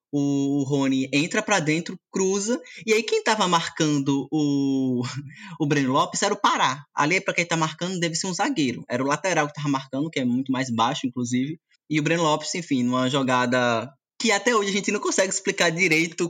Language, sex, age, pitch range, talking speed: Portuguese, male, 20-39, 140-175 Hz, 205 wpm